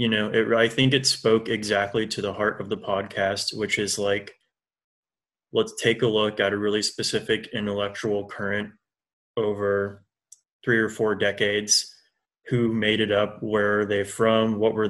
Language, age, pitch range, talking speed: English, 20-39, 105-110 Hz, 170 wpm